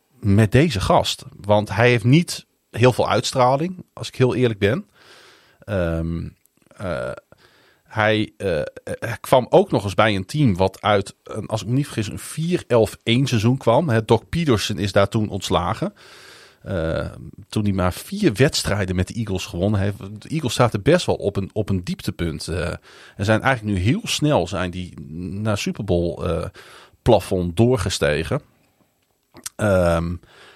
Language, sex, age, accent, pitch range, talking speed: Dutch, male, 40-59, Dutch, 95-125 Hz, 160 wpm